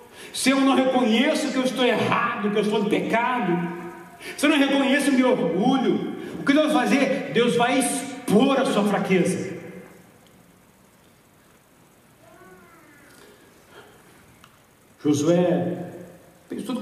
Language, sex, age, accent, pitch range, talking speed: Portuguese, male, 60-79, Brazilian, 175-260 Hz, 120 wpm